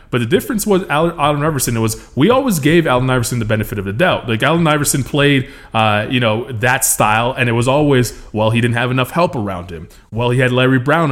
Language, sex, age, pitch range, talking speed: English, male, 20-39, 120-150 Hz, 245 wpm